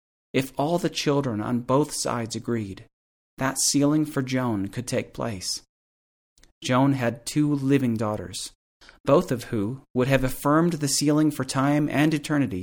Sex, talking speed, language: male, 150 wpm, English